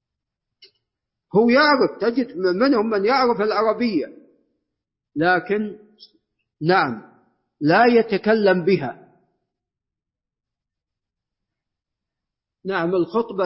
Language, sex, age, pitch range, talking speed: Arabic, male, 50-69, 165-215 Hz, 60 wpm